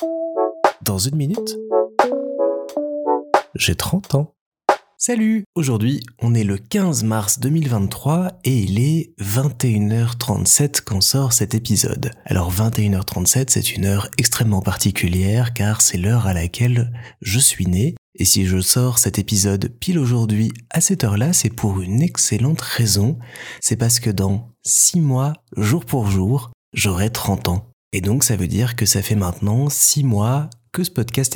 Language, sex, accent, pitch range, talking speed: French, male, French, 100-125 Hz, 150 wpm